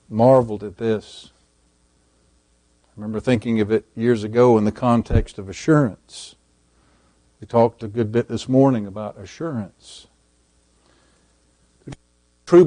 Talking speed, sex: 120 wpm, male